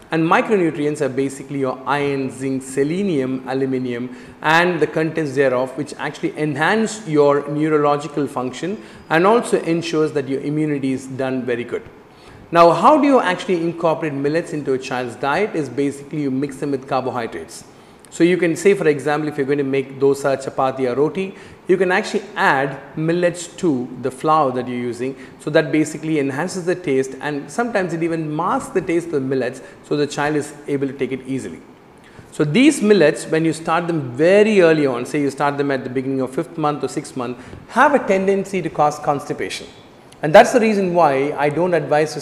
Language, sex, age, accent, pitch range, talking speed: Tamil, male, 40-59, native, 135-165 Hz, 200 wpm